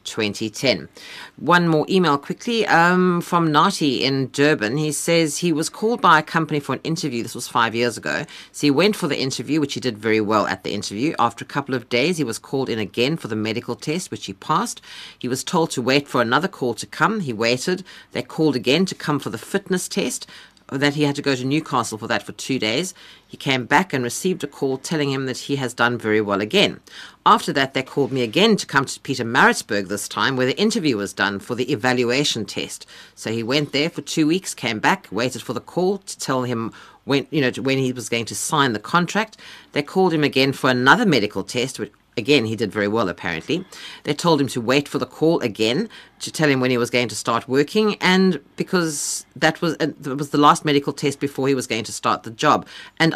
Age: 50-69